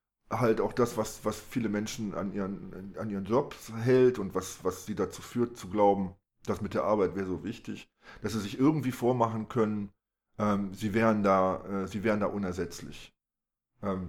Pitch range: 95-110 Hz